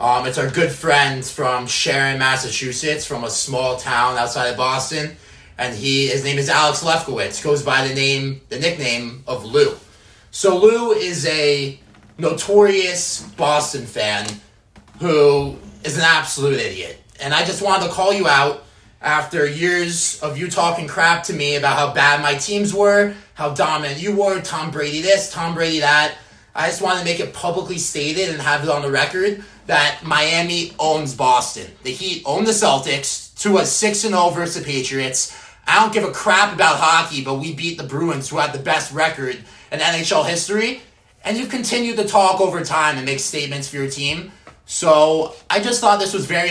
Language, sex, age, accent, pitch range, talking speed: English, male, 30-49, American, 135-170 Hz, 185 wpm